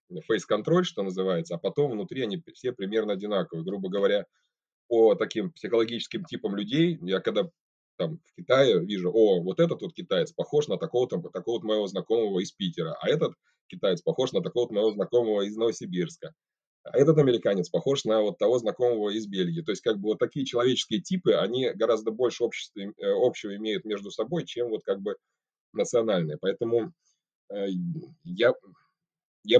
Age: 20-39